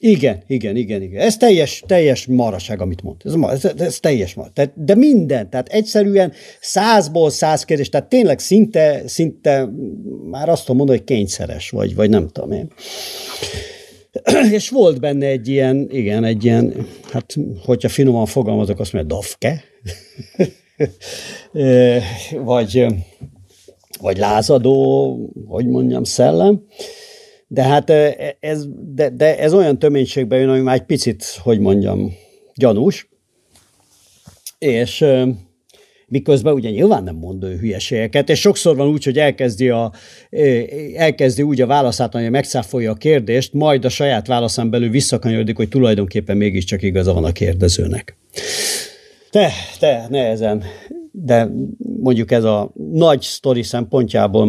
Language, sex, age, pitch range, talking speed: Hungarian, male, 50-69, 110-150 Hz, 130 wpm